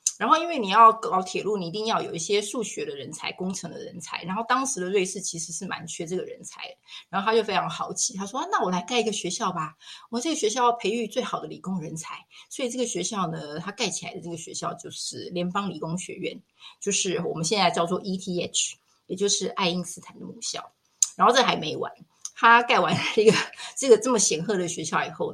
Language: Chinese